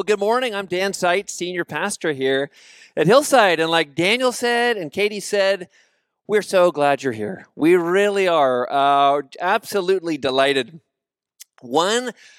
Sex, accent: male, American